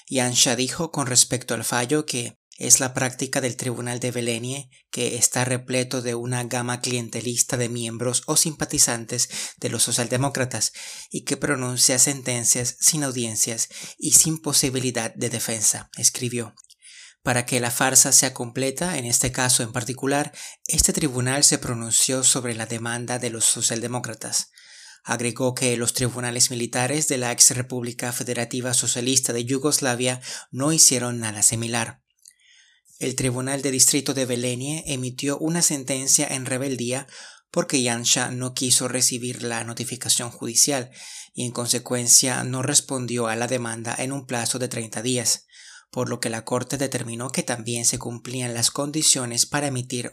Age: 30-49